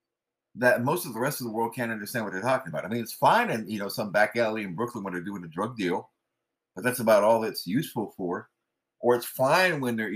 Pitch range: 100-165 Hz